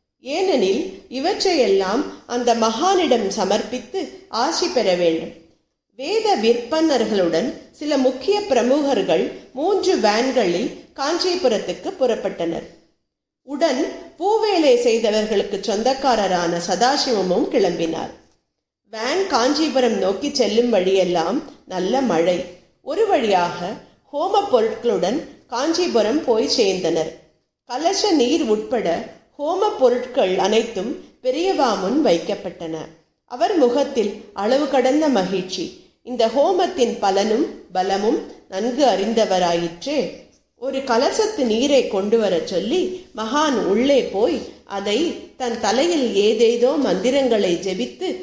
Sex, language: female, Tamil